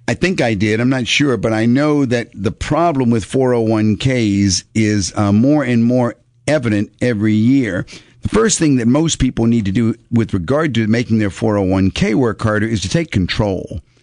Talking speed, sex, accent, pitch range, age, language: 190 wpm, male, American, 105-130 Hz, 50-69, English